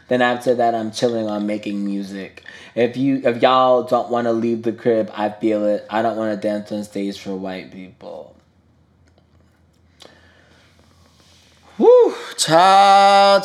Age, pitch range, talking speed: 20-39, 105-145 Hz, 140 wpm